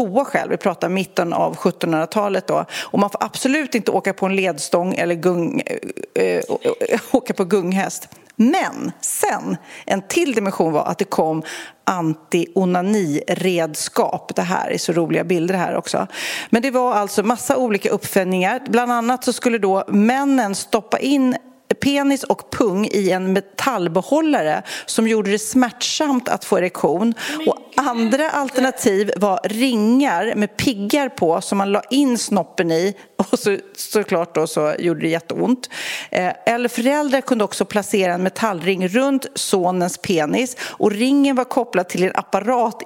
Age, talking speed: 40-59, 155 wpm